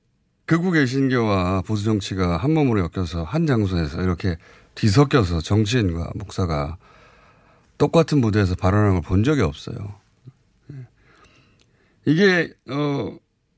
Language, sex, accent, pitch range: Korean, male, native, 105-160 Hz